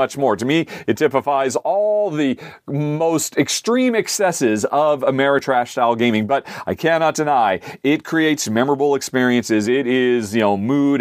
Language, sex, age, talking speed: English, male, 40-59, 145 wpm